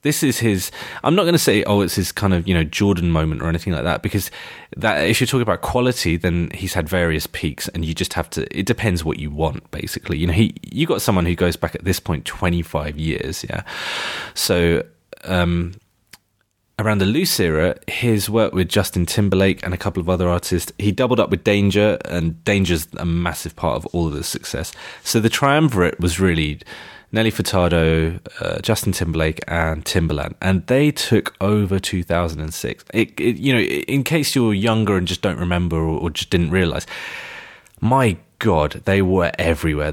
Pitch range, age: 85-105 Hz, 20-39